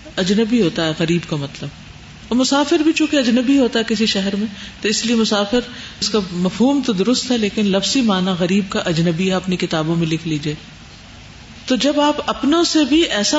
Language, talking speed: Urdu, 200 wpm